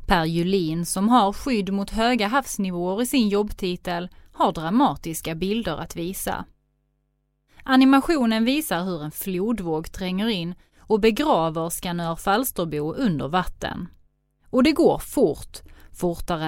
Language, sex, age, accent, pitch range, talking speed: Swedish, female, 30-49, native, 170-220 Hz, 125 wpm